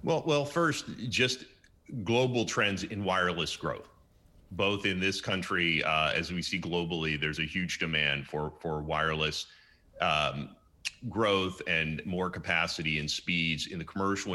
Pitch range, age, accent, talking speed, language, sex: 80-100 Hz, 30-49, American, 145 wpm, English, male